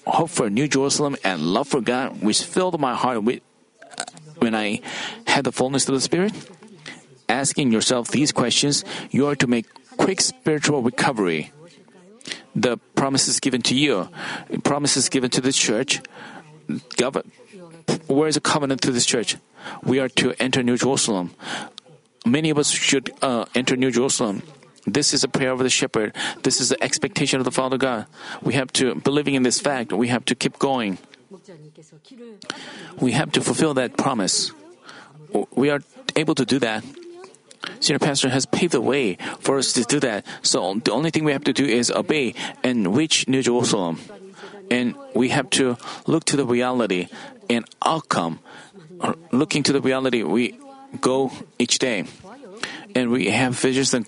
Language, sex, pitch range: Korean, male, 125-165 Hz